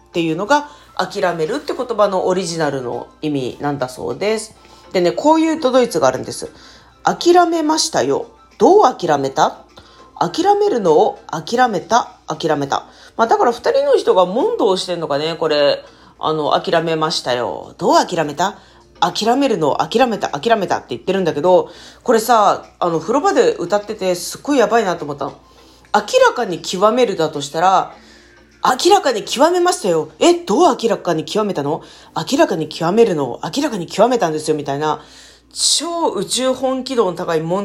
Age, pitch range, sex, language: 40-59, 155-250 Hz, female, Japanese